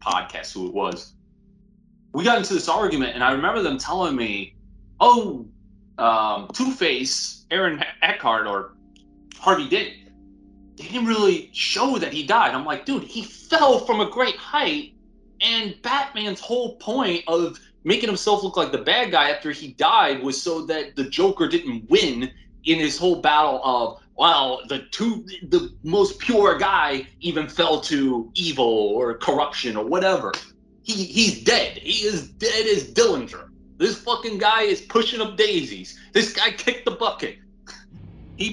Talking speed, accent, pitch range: 160 wpm, American, 150-245 Hz